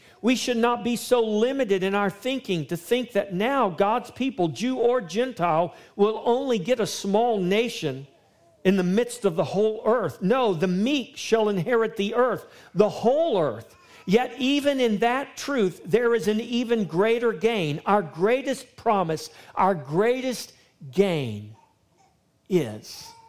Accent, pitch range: American, 170-240 Hz